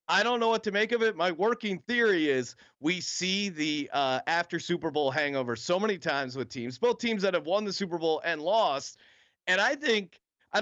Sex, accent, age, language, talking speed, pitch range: male, American, 30-49, English, 220 wpm, 160-200 Hz